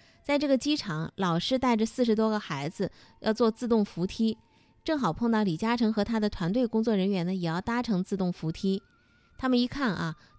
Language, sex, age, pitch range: Chinese, female, 20-39, 190-245 Hz